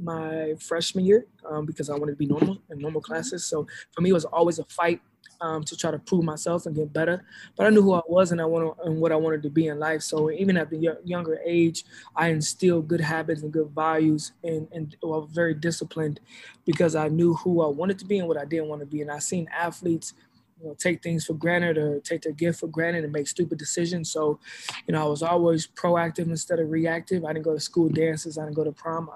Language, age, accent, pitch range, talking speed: English, 20-39, American, 155-170 Hz, 255 wpm